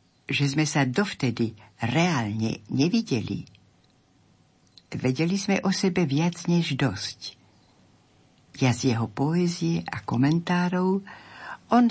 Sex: female